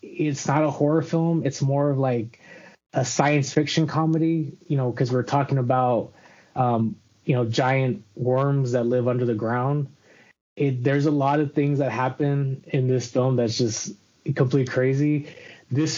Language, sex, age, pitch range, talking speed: English, male, 20-39, 130-150 Hz, 170 wpm